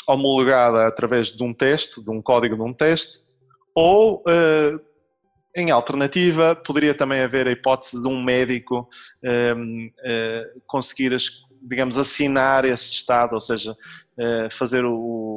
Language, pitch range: Portuguese, 120-145 Hz